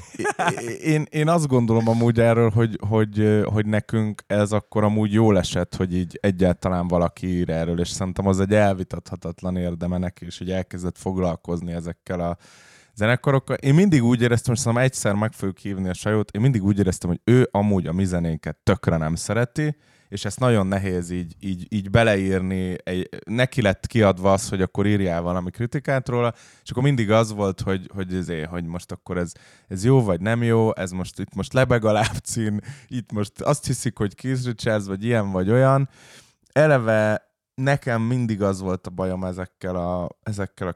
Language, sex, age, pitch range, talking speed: Hungarian, male, 20-39, 90-110 Hz, 180 wpm